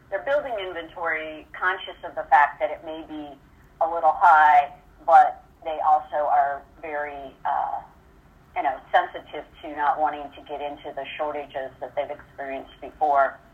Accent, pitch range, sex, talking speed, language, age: American, 145-180 Hz, female, 155 wpm, English, 40-59